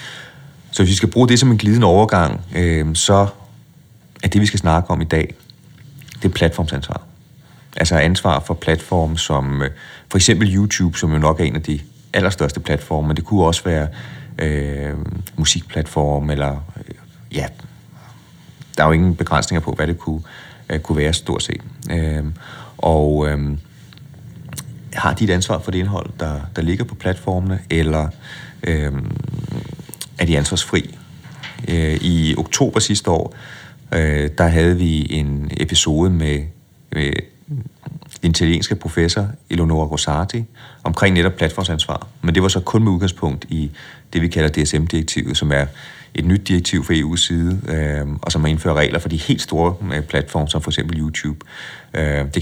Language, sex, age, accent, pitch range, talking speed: Danish, male, 30-49, native, 75-100 Hz, 160 wpm